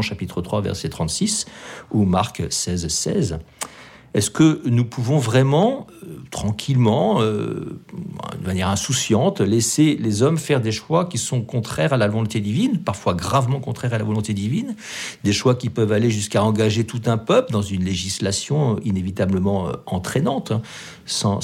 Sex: male